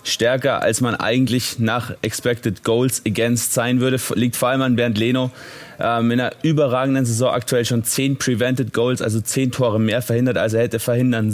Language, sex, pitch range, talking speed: German, male, 115-130 Hz, 185 wpm